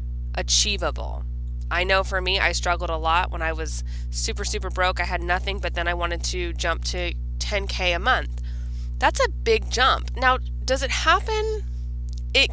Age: 20-39